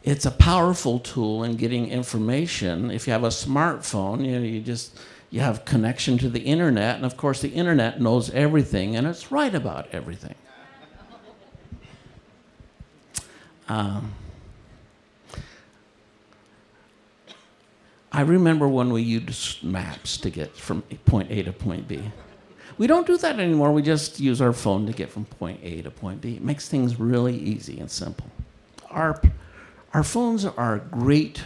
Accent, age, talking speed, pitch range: American, 60-79, 150 wpm, 105-135 Hz